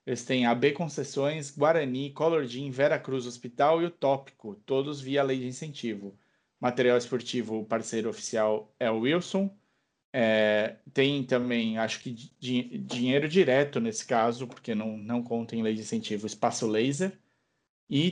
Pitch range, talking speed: 110-140 Hz, 145 wpm